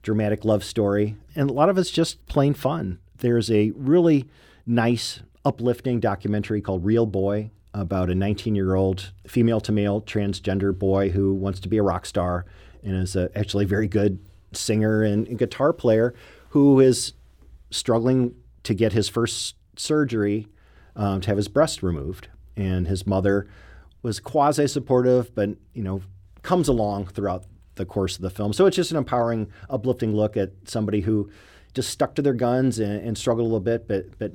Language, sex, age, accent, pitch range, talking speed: English, male, 40-59, American, 95-120 Hz, 170 wpm